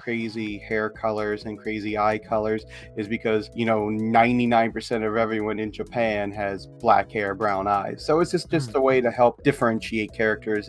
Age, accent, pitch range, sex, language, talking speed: 30-49, American, 110-125 Hz, male, English, 175 wpm